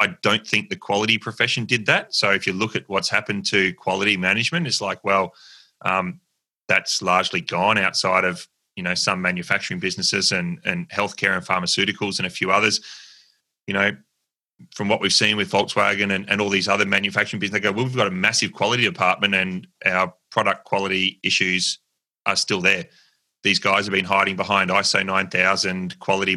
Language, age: English, 30-49